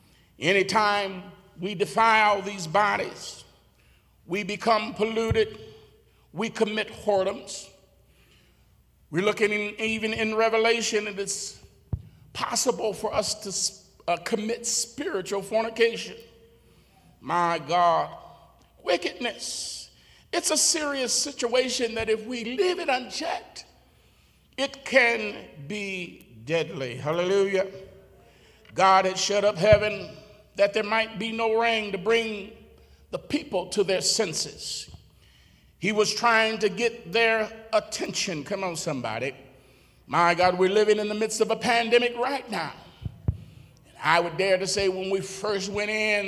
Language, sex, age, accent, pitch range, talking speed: English, male, 50-69, American, 190-230 Hz, 120 wpm